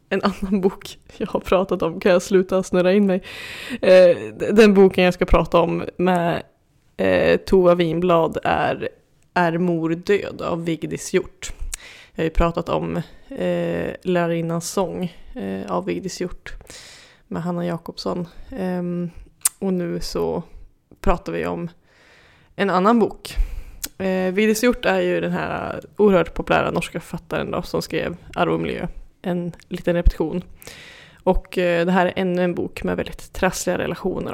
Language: English